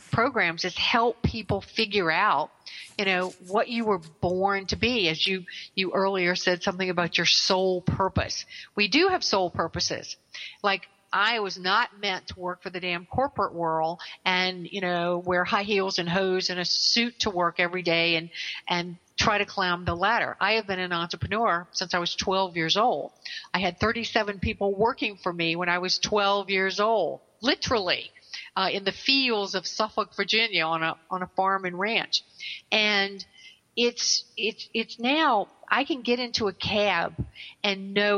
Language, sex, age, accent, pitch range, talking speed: English, female, 50-69, American, 180-225 Hz, 180 wpm